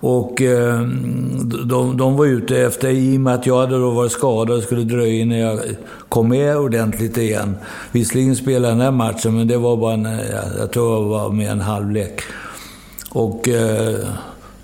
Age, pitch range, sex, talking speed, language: 60-79, 115-135 Hz, male, 195 wpm, English